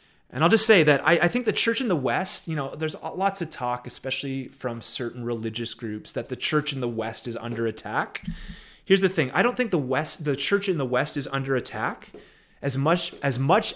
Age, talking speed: 30-49, 230 wpm